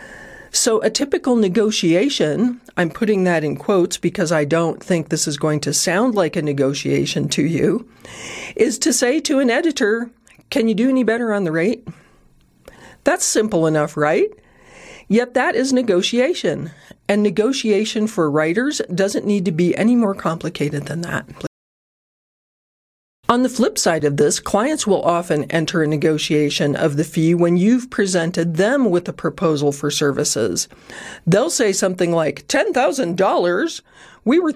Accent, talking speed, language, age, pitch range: American, 155 wpm, English, 40-59, 160-230 Hz